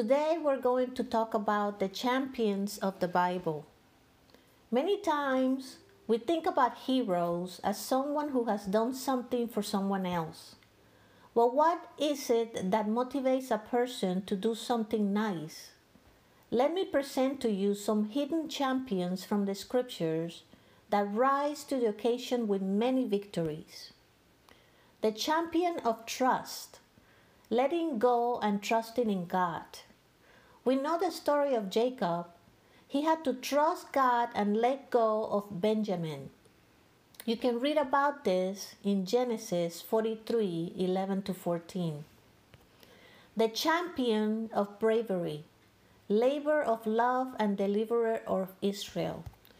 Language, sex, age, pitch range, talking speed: English, female, 50-69, 200-260 Hz, 125 wpm